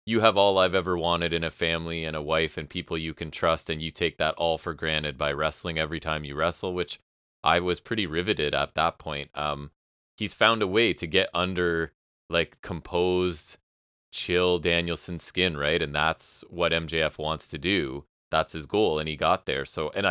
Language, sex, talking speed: English, male, 205 wpm